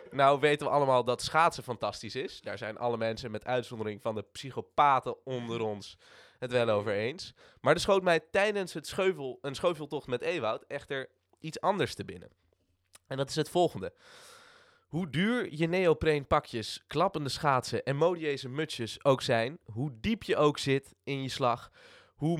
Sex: male